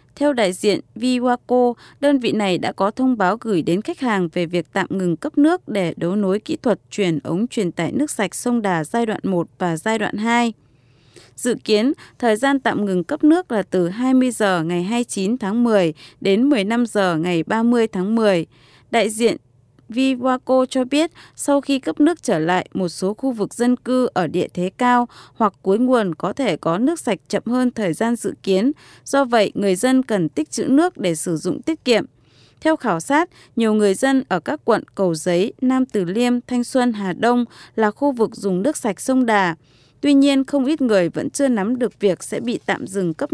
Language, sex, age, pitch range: Japanese, female, 20-39, 185-255 Hz